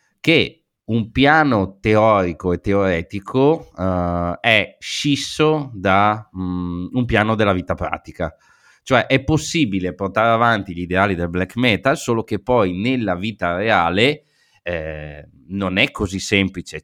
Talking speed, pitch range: 125 wpm, 95-115 Hz